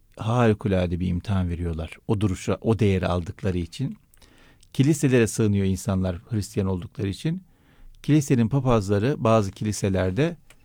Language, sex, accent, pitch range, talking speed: Turkish, male, native, 100-130 Hz, 115 wpm